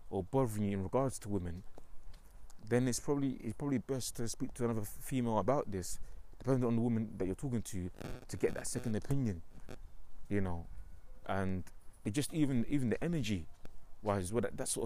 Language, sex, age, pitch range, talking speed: English, male, 30-49, 90-120 Hz, 190 wpm